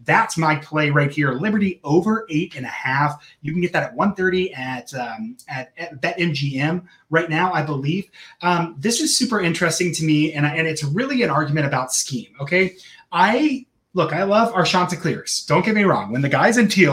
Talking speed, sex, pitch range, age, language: 215 wpm, male, 140-175 Hz, 30-49, English